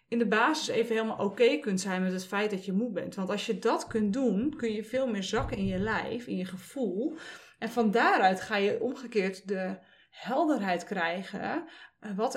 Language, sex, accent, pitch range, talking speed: Dutch, female, Dutch, 195-245 Hz, 210 wpm